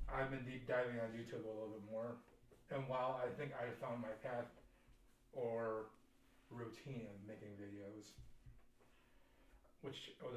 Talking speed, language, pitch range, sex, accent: 145 wpm, English, 115-140 Hz, male, American